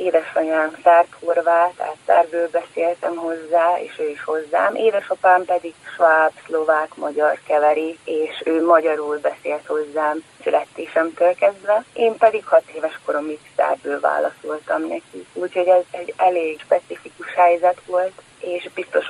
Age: 30-49